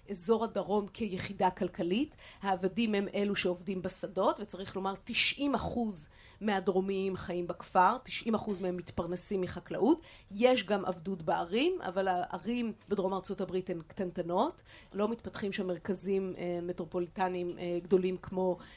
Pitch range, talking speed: 185-220 Hz, 125 wpm